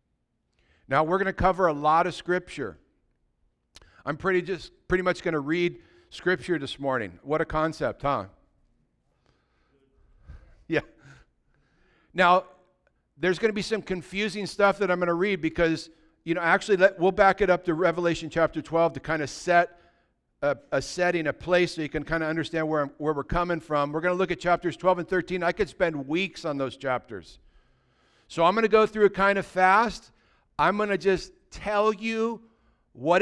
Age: 60-79